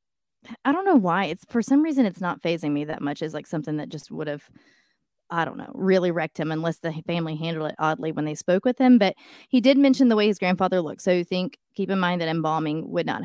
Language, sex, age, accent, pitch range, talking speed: English, female, 20-39, American, 165-210 Hz, 255 wpm